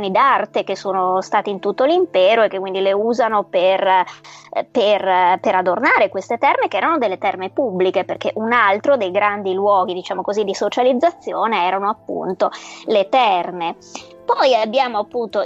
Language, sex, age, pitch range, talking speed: English, female, 20-39, 190-275 Hz, 145 wpm